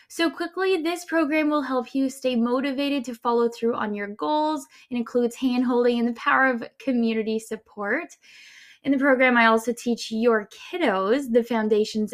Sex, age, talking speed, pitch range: female, 10-29, 170 wpm, 215-260 Hz